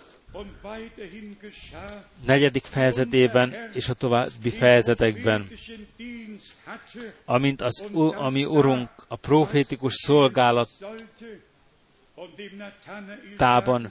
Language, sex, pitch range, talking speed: Hungarian, male, 120-200 Hz, 60 wpm